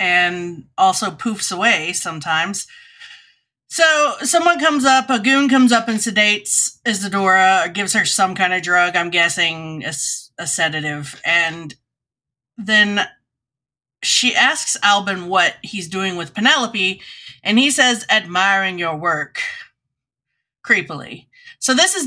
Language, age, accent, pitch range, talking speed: English, 30-49, American, 150-215 Hz, 130 wpm